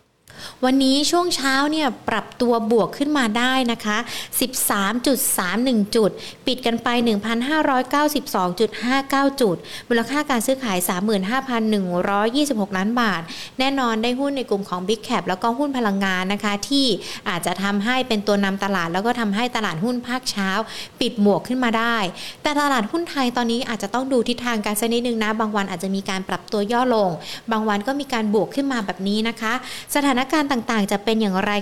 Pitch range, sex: 200-255 Hz, female